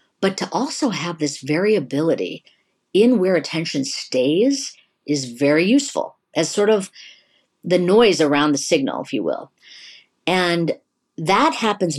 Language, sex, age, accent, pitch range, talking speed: English, female, 50-69, American, 145-225 Hz, 135 wpm